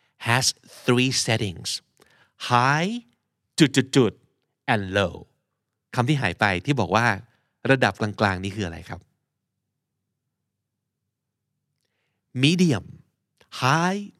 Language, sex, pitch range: Thai, male, 105-140 Hz